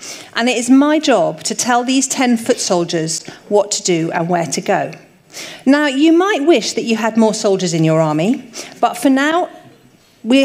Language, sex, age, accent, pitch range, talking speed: English, female, 40-59, British, 185-275 Hz, 195 wpm